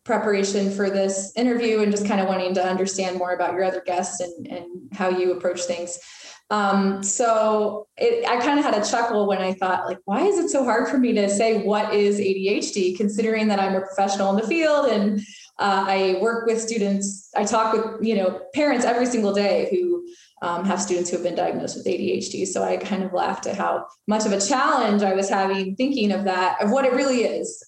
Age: 20-39